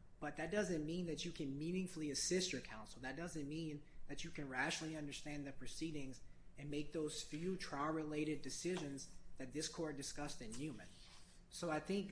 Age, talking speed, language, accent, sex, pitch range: 30-49, 180 wpm, English, American, male, 145-185 Hz